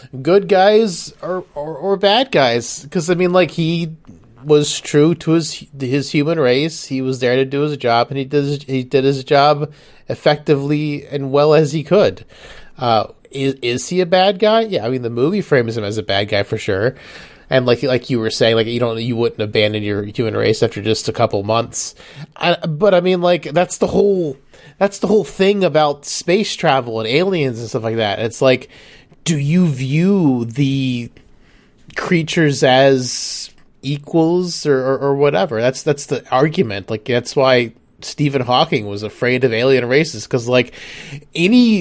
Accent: American